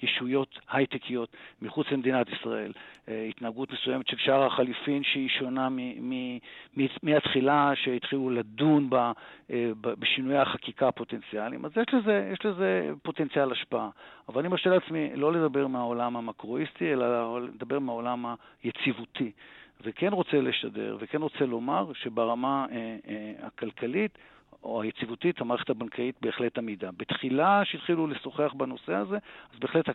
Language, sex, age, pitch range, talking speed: Hebrew, male, 50-69, 120-145 Hz, 120 wpm